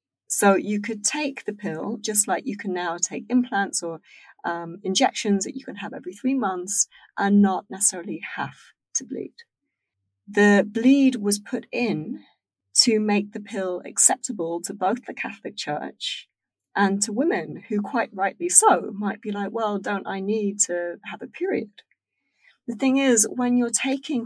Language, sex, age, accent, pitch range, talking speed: English, female, 30-49, British, 200-240 Hz, 170 wpm